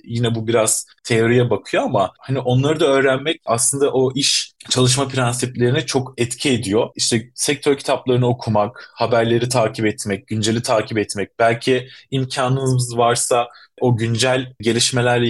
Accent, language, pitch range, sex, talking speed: native, Turkish, 115-135 Hz, male, 135 wpm